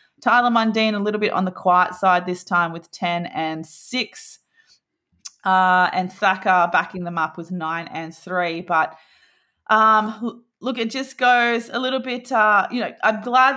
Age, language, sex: 20-39, English, female